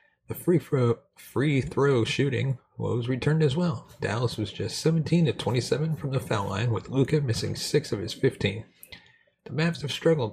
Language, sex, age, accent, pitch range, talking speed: English, male, 30-49, American, 115-150 Hz, 170 wpm